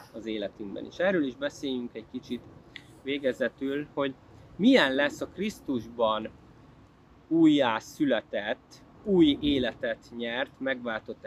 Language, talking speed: Hungarian, 105 wpm